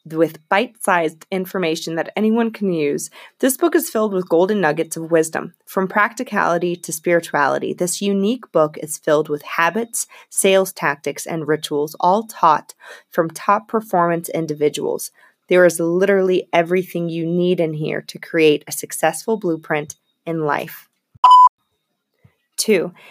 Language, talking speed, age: English, 140 wpm, 30-49